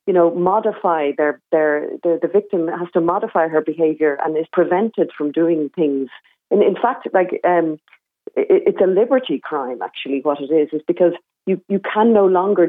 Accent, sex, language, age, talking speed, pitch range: Irish, female, English, 40-59, 190 wpm, 155-200 Hz